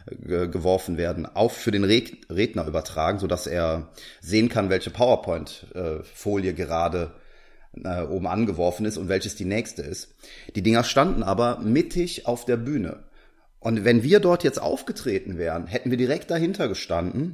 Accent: German